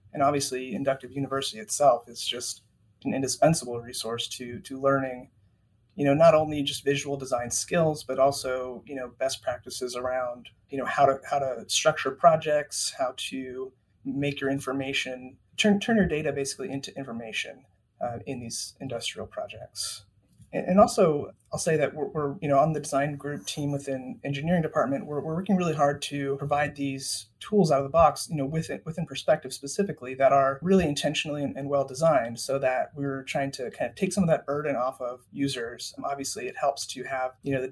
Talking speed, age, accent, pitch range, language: 190 wpm, 30-49, American, 125-145 Hz, English